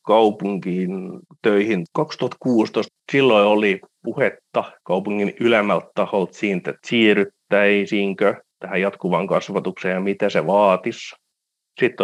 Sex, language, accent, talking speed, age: male, Finnish, native, 95 wpm, 30-49